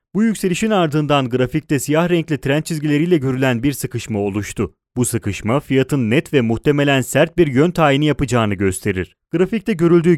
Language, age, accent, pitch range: Italian, 30-49, Turkish, 115-175 Hz